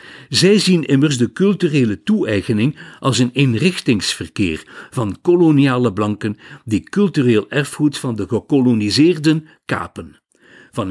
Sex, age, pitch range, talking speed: male, 60-79, 120-160 Hz, 110 wpm